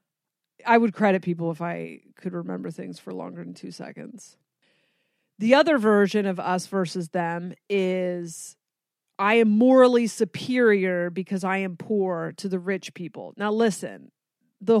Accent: American